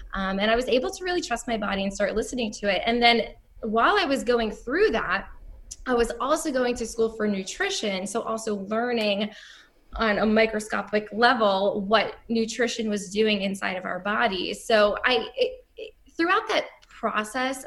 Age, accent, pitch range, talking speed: 10-29, American, 215-310 Hz, 170 wpm